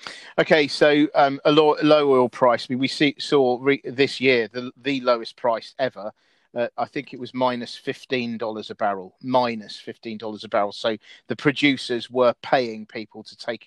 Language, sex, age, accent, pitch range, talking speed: English, male, 40-59, British, 110-135 Hz, 180 wpm